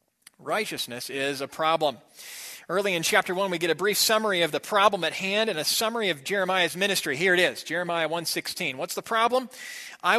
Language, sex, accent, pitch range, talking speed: English, male, American, 160-210 Hz, 195 wpm